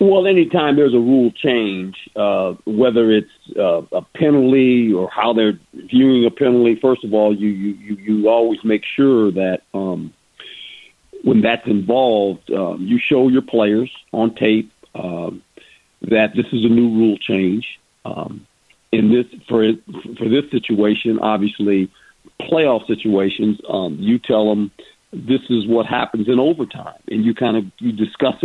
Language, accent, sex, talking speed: English, American, male, 155 wpm